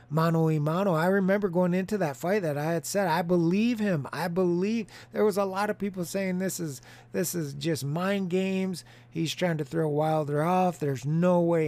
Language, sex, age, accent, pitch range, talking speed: English, male, 30-49, American, 150-200 Hz, 205 wpm